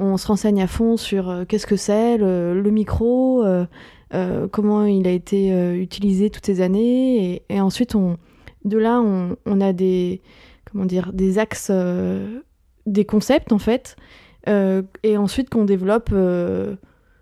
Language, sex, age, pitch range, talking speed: French, female, 20-39, 190-220 Hz, 160 wpm